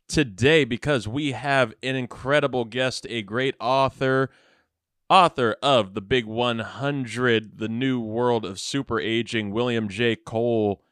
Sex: male